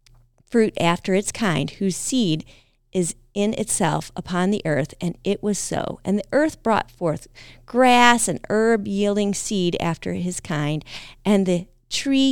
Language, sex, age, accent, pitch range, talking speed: English, female, 30-49, American, 145-205 Hz, 155 wpm